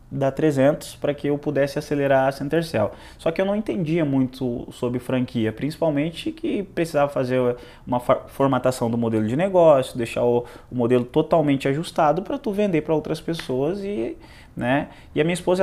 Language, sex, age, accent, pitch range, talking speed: Portuguese, male, 20-39, Brazilian, 125-160 Hz, 175 wpm